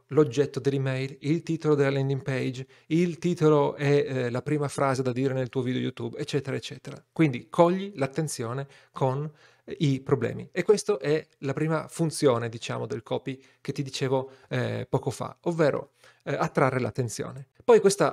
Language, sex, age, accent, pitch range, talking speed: Italian, male, 40-59, native, 130-155 Hz, 160 wpm